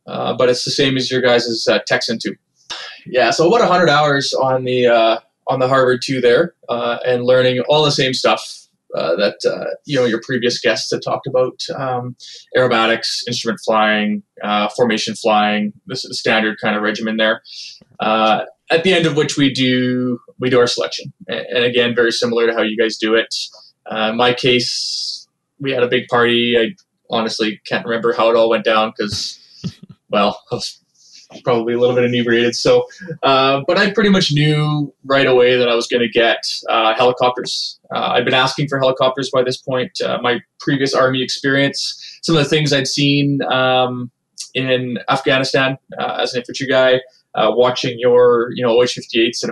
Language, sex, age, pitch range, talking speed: English, male, 20-39, 115-135 Hz, 195 wpm